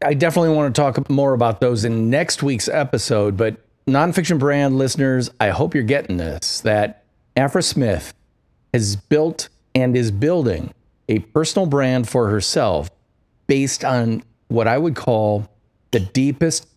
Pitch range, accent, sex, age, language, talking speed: 110-145 Hz, American, male, 40-59, English, 150 wpm